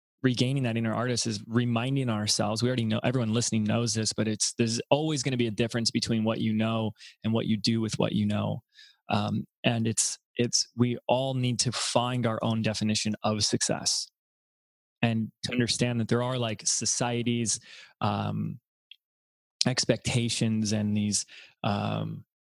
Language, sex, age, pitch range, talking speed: English, male, 20-39, 105-120 Hz, 165 wpm